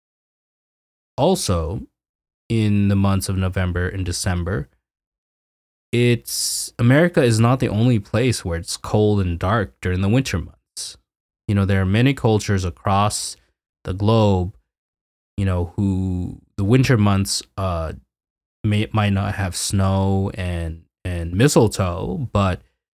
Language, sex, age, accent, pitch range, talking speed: English, male, 20-39, American, 90-115 Hz, 130 wpm